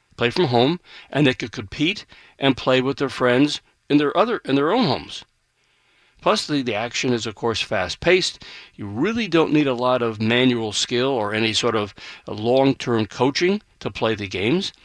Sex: male